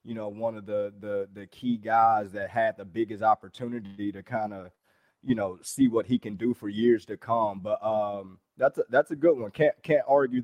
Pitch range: 110-125 Hz